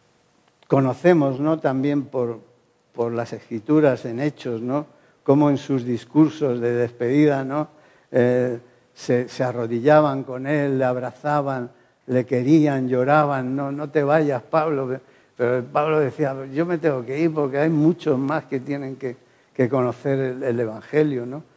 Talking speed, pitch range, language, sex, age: 135 wpm, 125-155 Hz, English, male, 60-79